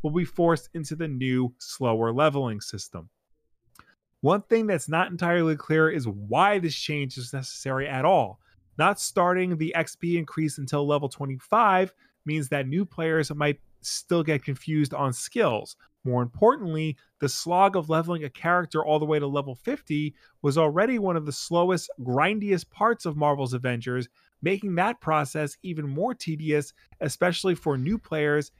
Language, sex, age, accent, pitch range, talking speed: English, male, 30-49, American, 135-170 Hz, 160 wpm